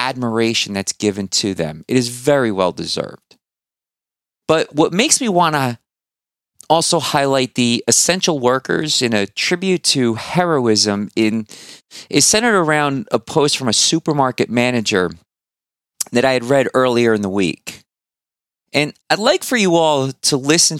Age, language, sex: 30-49, English, male